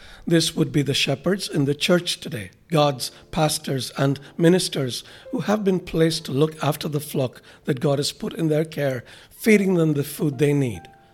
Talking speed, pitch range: 190 wpm, 140-165 Hz